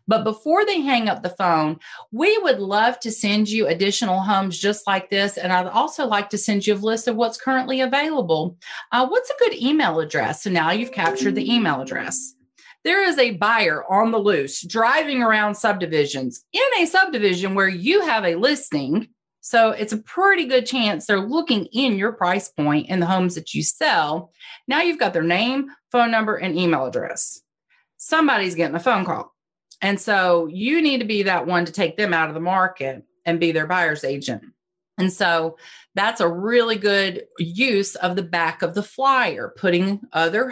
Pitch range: 175-245 Hz